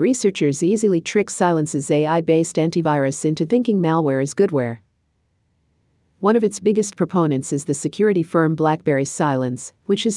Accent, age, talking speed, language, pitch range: American, 50-69, 140 wpm, English, 140-170 Hz